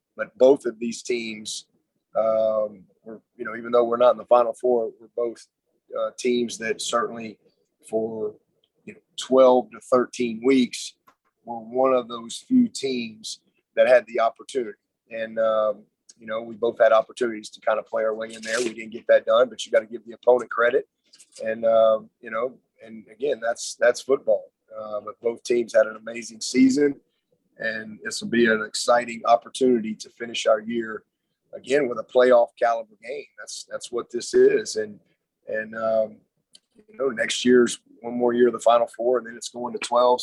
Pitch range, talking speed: 110-130 Hz, 185 wpm